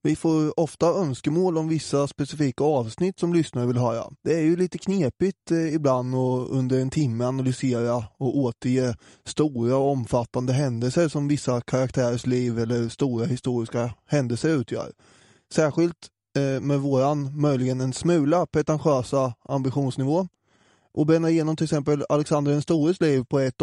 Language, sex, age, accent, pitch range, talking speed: English, male, 20-39, Swedish, 125-155 Hz, 145 wpm